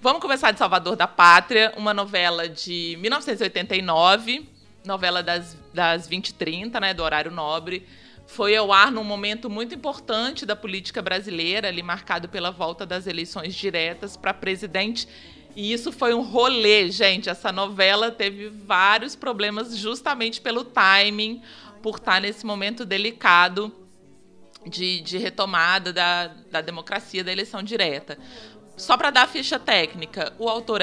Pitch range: 180-225 Hz